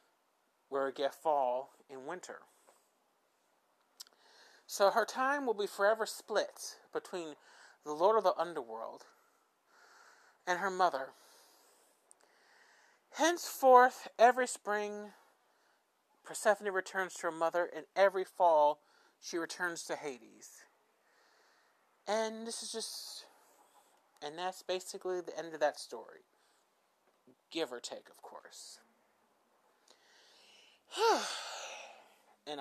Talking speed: 100 wpm